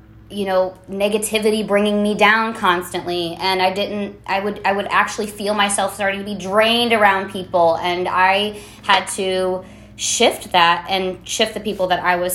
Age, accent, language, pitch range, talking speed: 20-39, American, English, 175-220 Hz, 175 wpm